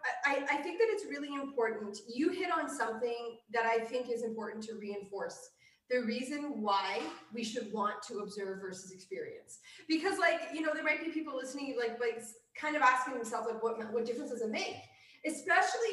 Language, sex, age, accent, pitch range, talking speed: English, female, 20-39, American, 230-330 Hz, 190 wpm